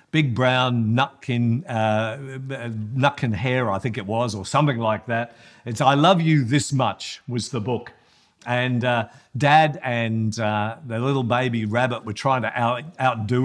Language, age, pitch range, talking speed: English, 50-69, 105-135 Hz, 165 wpm